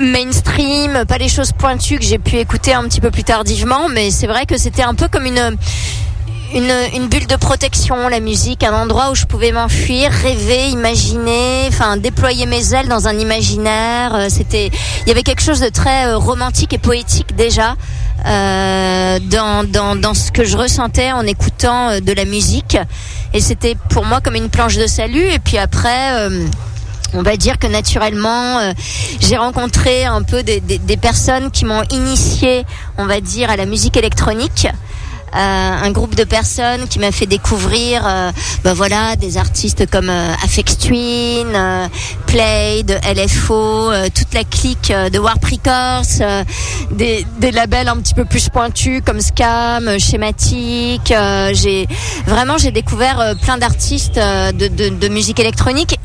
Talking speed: 170 wpm